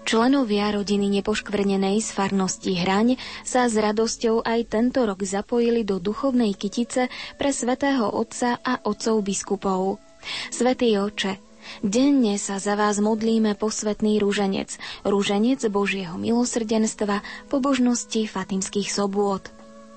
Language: Slovak